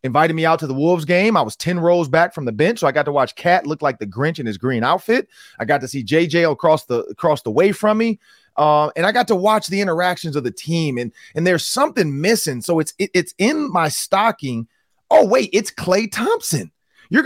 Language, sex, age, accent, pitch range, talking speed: English, male, 30-49, American, 145-200 Hz, 245 wpm